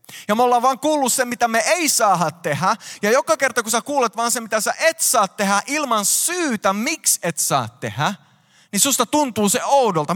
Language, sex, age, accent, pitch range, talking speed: Finnish, male, 20-39, native, 155-230 Hz, 205 wpm